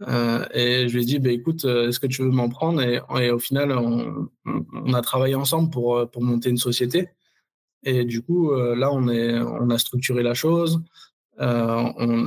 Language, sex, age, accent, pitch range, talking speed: French, male, 20-39, French, 120-135 Hz, 200 wpm